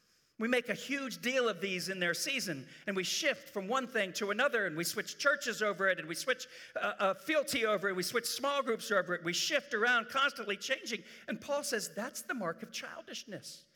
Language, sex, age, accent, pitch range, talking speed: English, male, 50-69, American, 190-245 Hz, 220 wpm